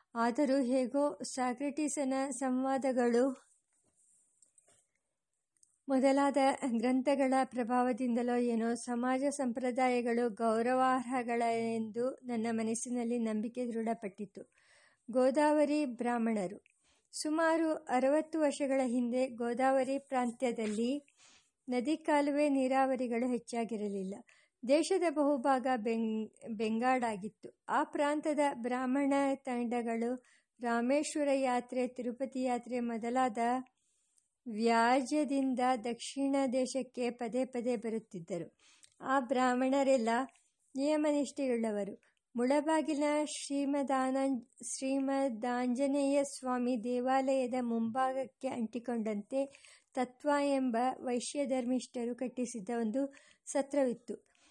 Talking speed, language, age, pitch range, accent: 70 wpm, English, 50-69, 240-275 Hz, Indian